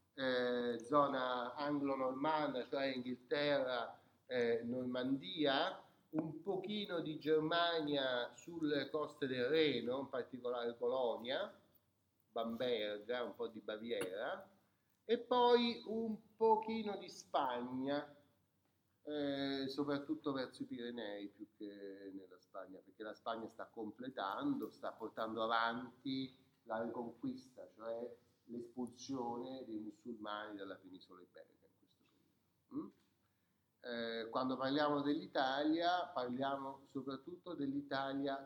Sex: male